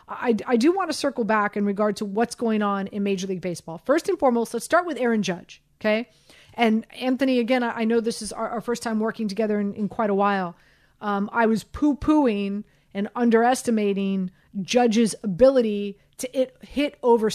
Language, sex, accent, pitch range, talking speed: English, female, American, 200-240 Hz, 195 wpm